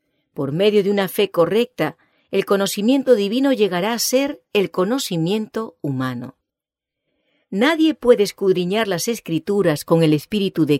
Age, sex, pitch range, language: 50-69, female, 160-225 Hz, English